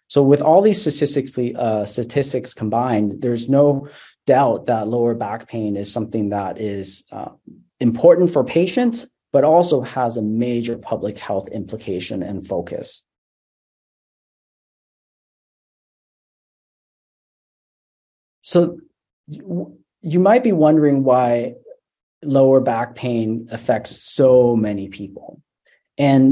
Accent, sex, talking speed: American, male, 105 wpm